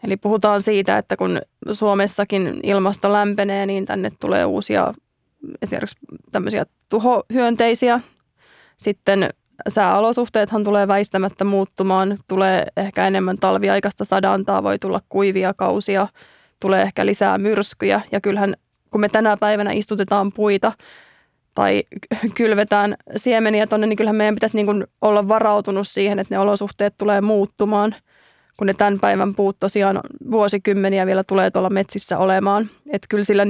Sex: female